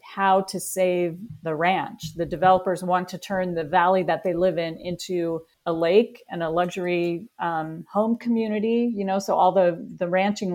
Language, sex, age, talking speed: English, female, 40-59, 180 wpm